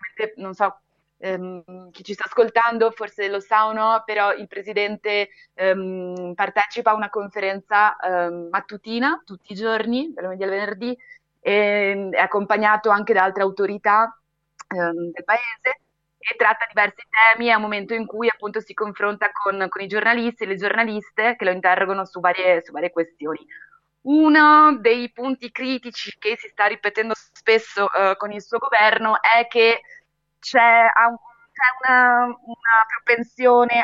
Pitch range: 195-230 Hz